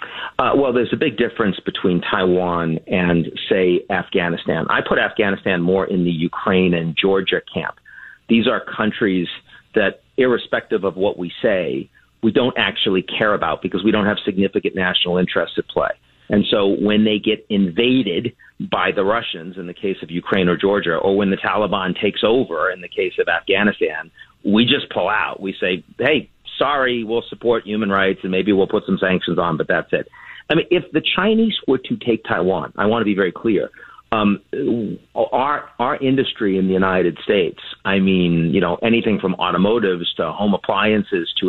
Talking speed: 185 wpm